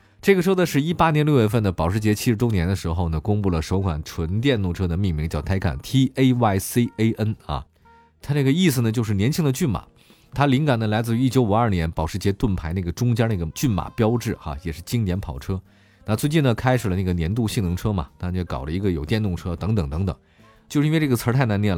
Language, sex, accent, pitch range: Chinese, male, native, 95-125 Hz